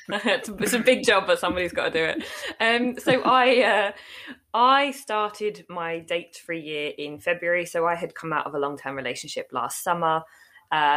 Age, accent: 20-39, British